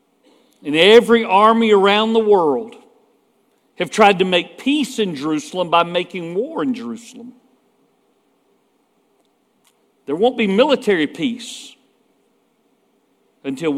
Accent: American